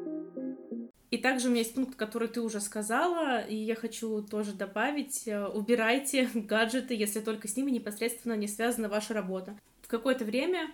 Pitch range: 215-255 Hz